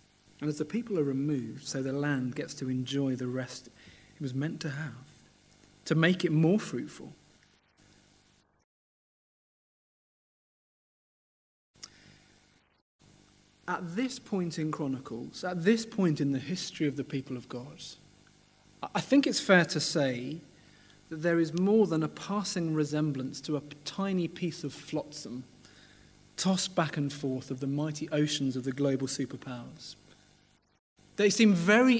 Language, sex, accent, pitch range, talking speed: English, male, British, 135-185 Hz, 140 wpm